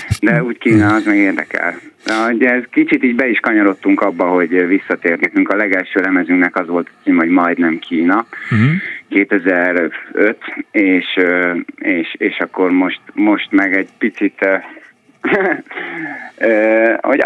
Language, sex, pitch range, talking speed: Hungarian, male, 95-125 Hz, 125 wpm